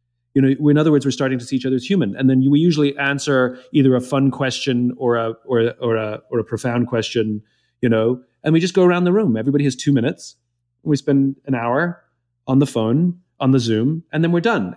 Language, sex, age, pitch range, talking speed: English, male, 30-49, 120-155 Hz, 235 wpm